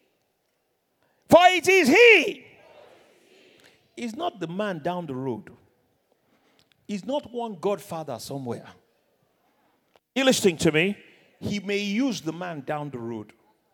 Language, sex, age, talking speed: English, male, 50-69, 120 wpm